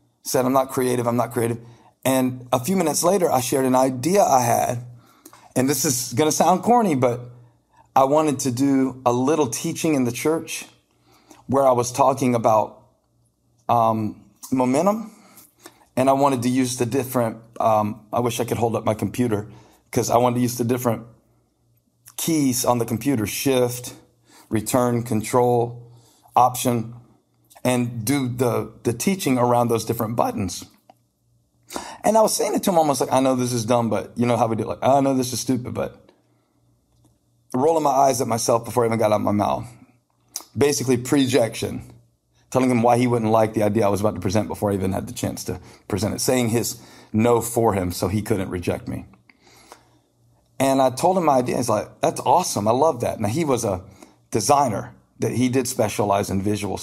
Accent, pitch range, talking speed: American, 110-130 Hz, 190 wpm